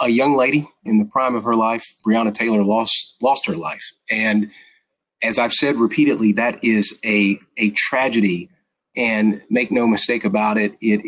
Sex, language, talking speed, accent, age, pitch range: male, English, 175 wpm, American, 30-49, 105-125 Hz